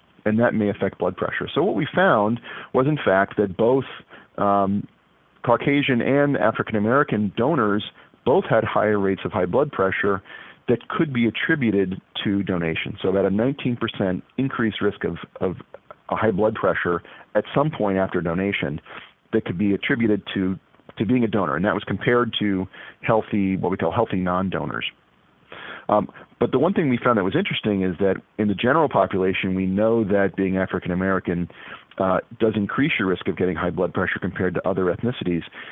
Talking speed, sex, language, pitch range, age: 180 wpm, male, English, 95-115 Hz, 40-59